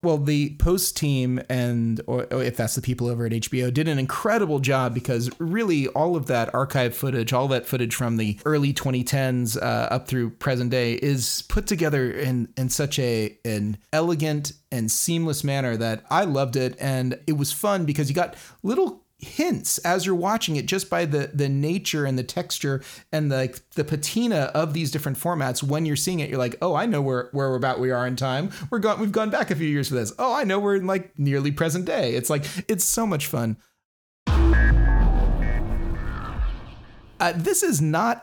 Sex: male